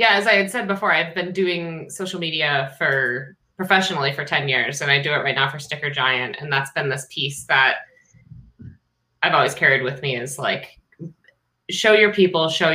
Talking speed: 200 wpm